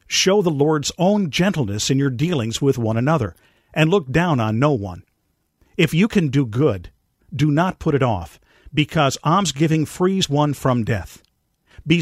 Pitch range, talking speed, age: 125-165 Hz, 170 wpm, 50-69